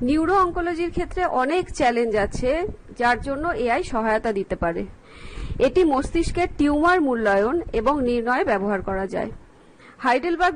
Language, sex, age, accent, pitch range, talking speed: Bengali, female, 50-69, native, 225-305 Hz, 125 wpm